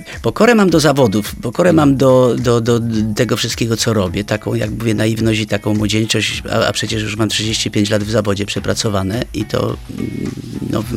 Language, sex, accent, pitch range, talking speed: Polish, male, native, 110-135 Hz, 185 wpm